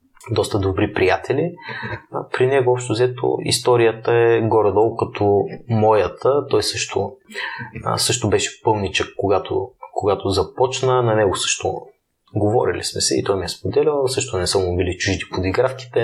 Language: Bulgarian